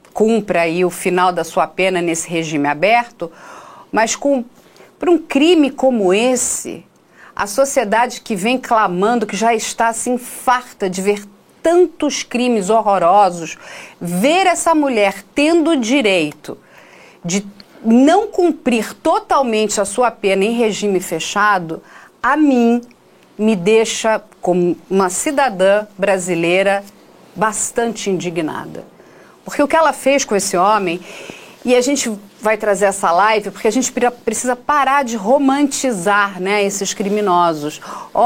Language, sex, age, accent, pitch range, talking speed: Portuguese, female, 40-59, Brazilian, 195-270 Hz, 130 wpm